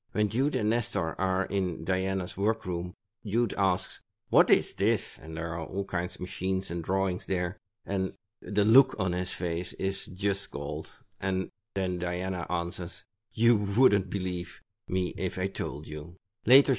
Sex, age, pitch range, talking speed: male, 50-69, 90-110 Hz, 160 wpm